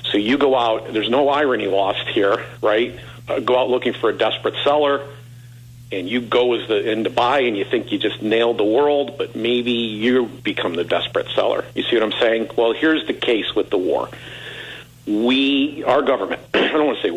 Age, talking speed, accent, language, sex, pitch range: 50-69, 215 wpm, American, English, male, 115-145 Hz